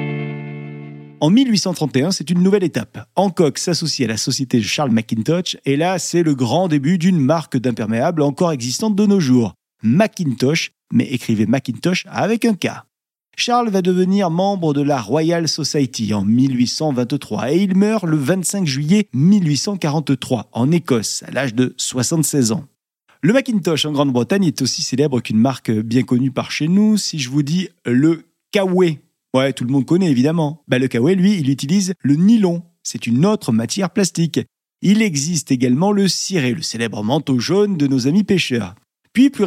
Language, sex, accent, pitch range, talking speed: French, male, French, 125-180 Hz, 170 wpm